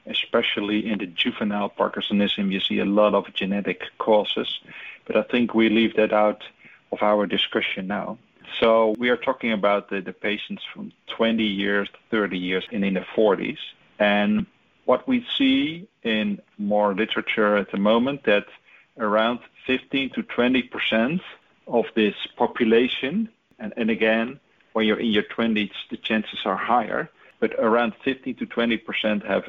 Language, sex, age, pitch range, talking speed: English, male, 40-59, 105-115 Hz, 155 wpm